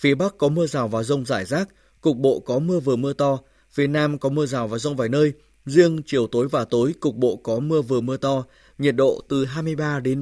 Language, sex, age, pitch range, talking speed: Vietnamese, male, 20-39, 130-150 Hz, 260 wpm